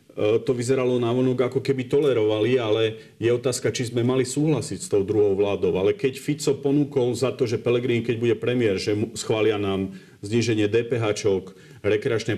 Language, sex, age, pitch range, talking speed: Slovak, male, 40-59, 105-140 Hz, 170 wpm